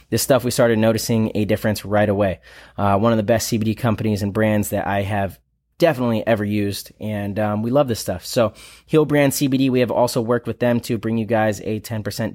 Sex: male